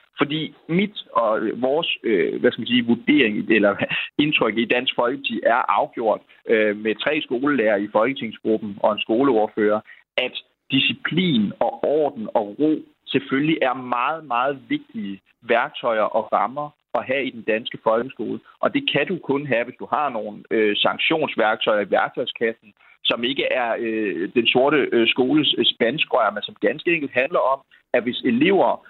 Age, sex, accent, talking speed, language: 30-49, male, native, 155 wpm, Danish